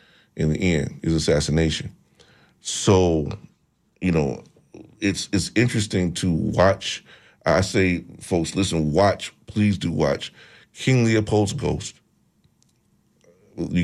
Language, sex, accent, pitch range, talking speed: English, male, American, 80-95 Hz, 110 wpm